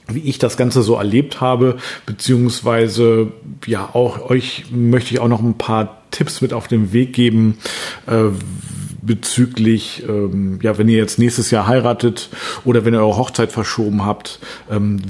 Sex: male